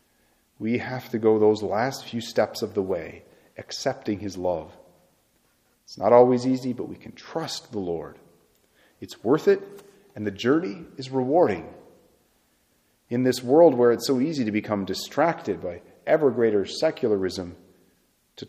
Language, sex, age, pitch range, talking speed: English, male, 40-59, 95-120 Hz, 155 wpm